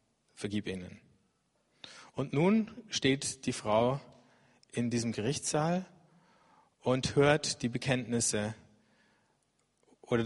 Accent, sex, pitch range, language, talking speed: German, male, 115-140 Hz, German, 90 wpm